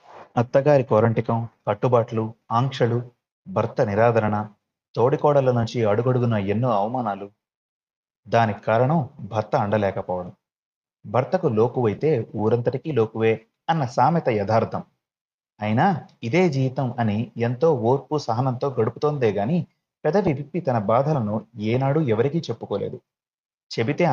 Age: 30-49